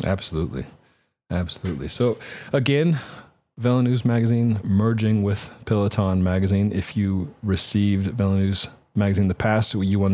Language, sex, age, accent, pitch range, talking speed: English, male, 40-59, American, 90-110 Hz, 130 wpm